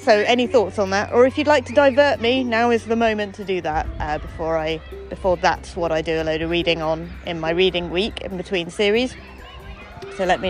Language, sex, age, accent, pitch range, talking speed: English, female, 30-49, British, 175-245 Hz, 240 wpm